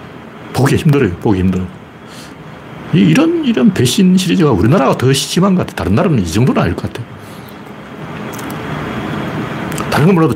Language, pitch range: Korean, 120-175 Hz